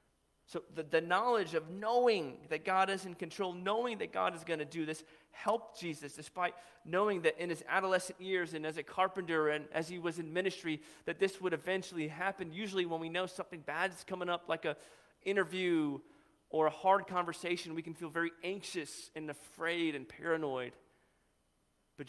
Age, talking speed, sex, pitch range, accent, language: 30-49, 185 wpm, male, 155-190 Hz, American, English